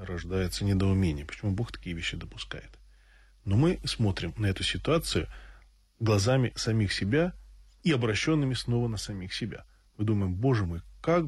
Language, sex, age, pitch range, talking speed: Russian, male, 20-39, 95-120 Hz, 145 wpm